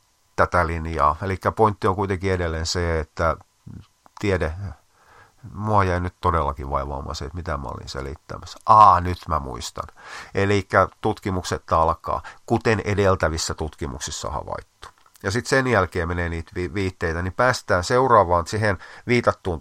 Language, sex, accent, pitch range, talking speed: Finnish, male, native, 80-100 Hz, 135 wpm